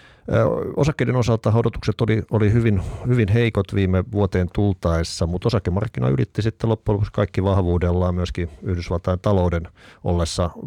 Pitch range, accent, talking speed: 90-105 Hz, native, 125 wpm